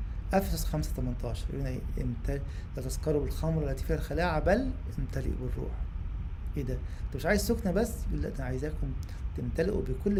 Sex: male